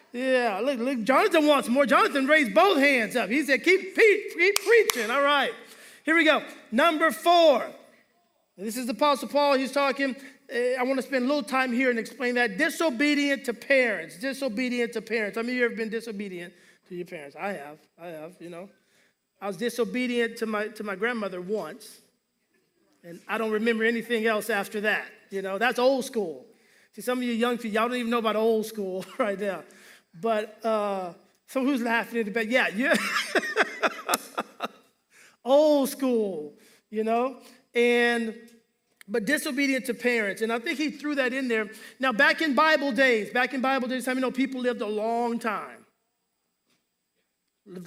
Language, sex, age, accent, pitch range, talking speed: English, male, 30-49, American, 220-270 Hz, 185 wpm